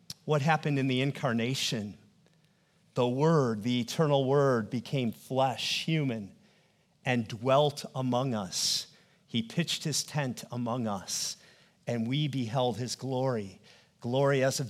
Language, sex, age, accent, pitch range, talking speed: English, male, 40-59, American, 125-175 Hz, 125 wpm